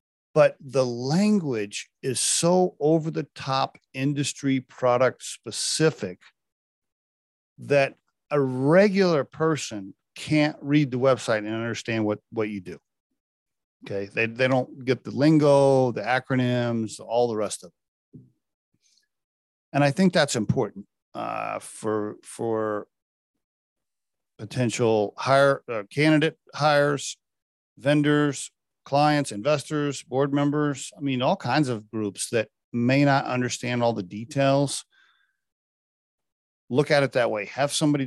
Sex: male